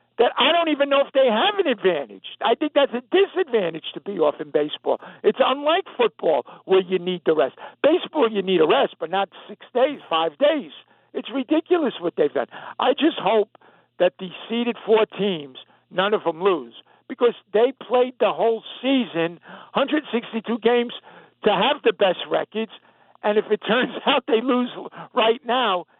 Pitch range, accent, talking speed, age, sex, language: 195-260 Hz, American, 180 wpm, 60-79, male, English